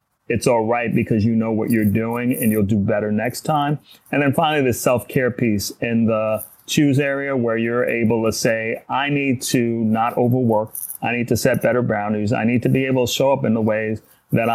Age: 30-49